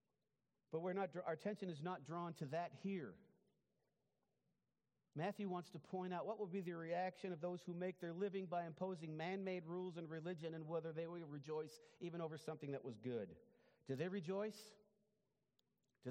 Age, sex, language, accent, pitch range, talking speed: 40-59, male, English, American, 130-190 Hz, 180 wpm